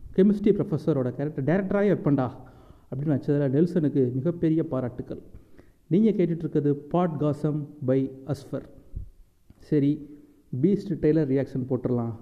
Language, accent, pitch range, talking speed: Tamil, native, 130-165 Hz, 105 wpm